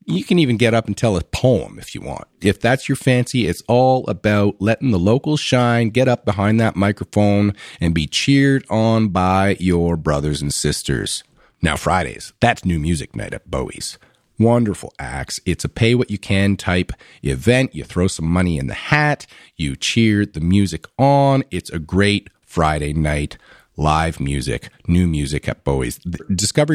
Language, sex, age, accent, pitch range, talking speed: English, male, 40-59, American, 85-125 Hz, 175 wpm